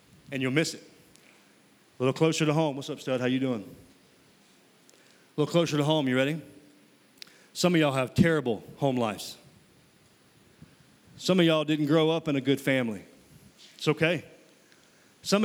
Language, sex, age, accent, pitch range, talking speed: English, male, 40-59, American, 150-180 Hz, 165 wpm